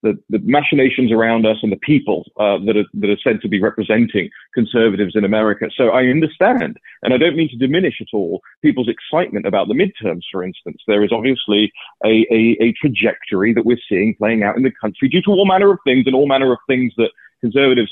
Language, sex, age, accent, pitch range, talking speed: English, male, 30-49, British, 110-145 Hz, 220 wpm